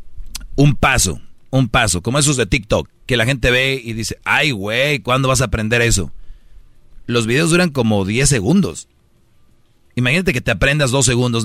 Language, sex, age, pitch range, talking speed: Spanish, male, 40-59, 105-135 Hz, 175 wpm